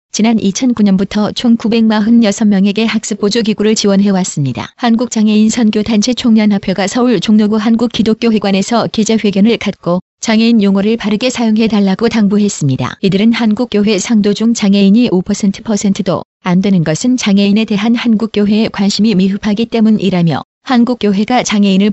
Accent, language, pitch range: native, Korean, 200-225 Hz